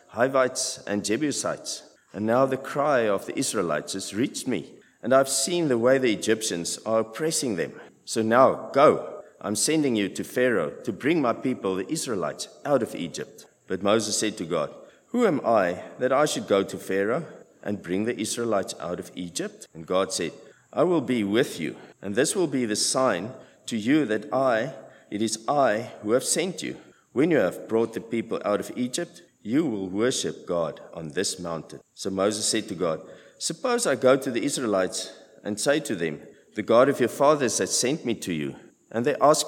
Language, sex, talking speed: English, male, 200 wpm